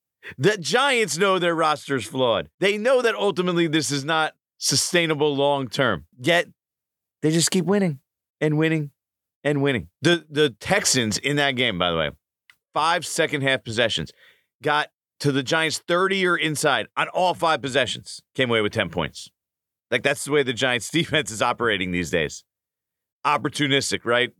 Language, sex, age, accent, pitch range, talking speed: English, male, 40-59, American, 100-155 Hz, 165 wpm